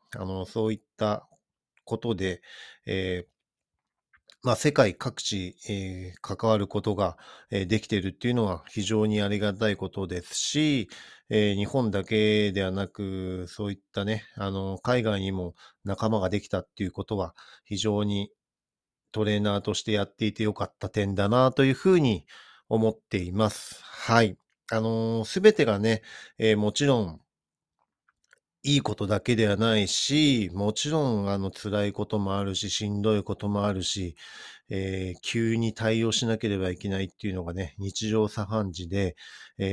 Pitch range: 100-115 Hz